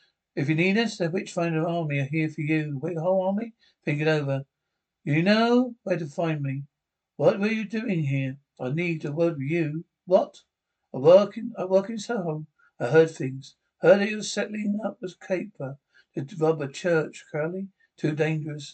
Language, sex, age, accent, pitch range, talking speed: English, male, 60-79, British, 155-190 Hz, 190 wpm